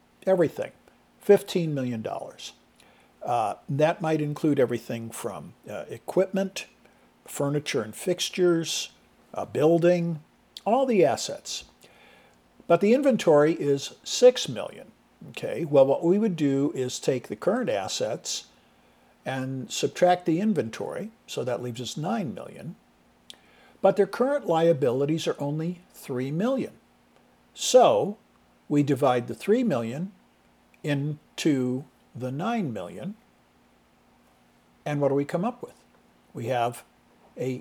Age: 60-79